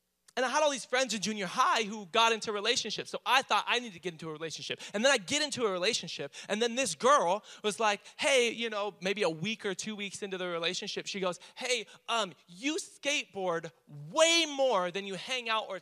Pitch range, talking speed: 175-240 Hz, 230 wpm